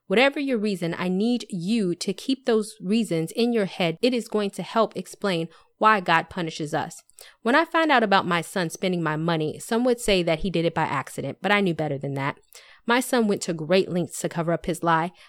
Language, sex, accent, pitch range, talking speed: English, female, American, 170-220 Hz, 230 wpm